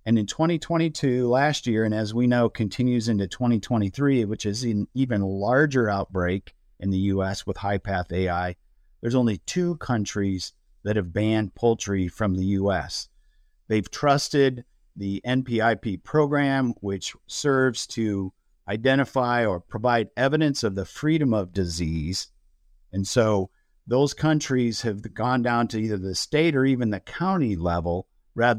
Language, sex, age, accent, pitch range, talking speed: English, male, 50-69, American, 95-125 Hz, 145 wpm